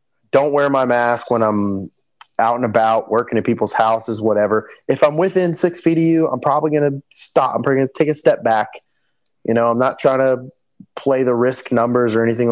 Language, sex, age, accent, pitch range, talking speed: English, male, 30-49, American, 120-160 Hz, 220 wpm